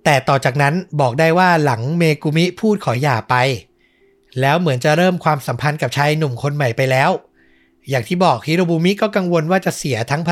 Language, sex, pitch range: Thai, male, 130-170 Hz